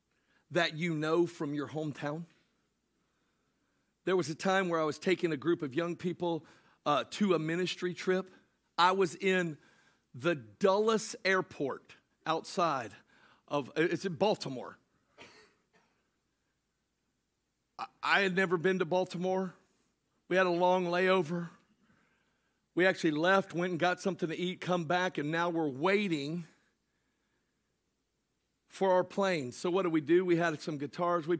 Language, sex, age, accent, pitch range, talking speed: English, male, 50-69, American, 160-185 Hz, 140 wpm